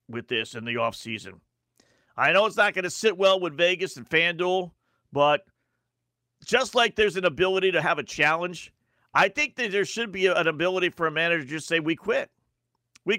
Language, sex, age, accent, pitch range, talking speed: English, male, 50-69, American, 175-250 Hz, 205 wpm